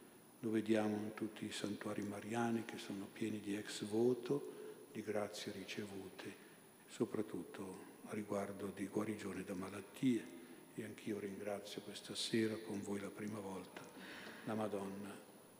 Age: 50-69